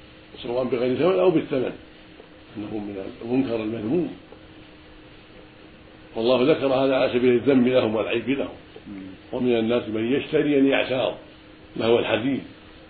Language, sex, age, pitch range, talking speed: Arabic, male, 60-79, 110-130 Hz, 120 wpm